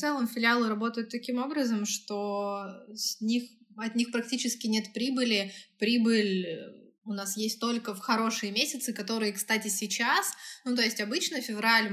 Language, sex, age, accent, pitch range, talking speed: Russian, female, 20-39, native, 205-235 Hz, 150 wpm